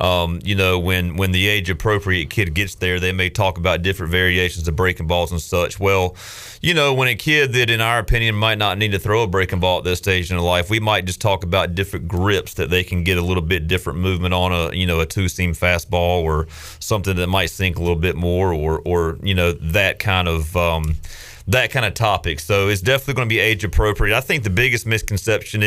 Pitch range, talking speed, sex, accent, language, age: 90-105 Hz, 245 wpm, male, American, English, 30-49